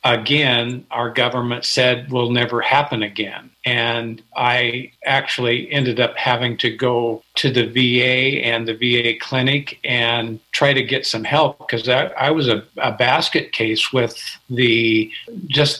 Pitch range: 120-135 Hz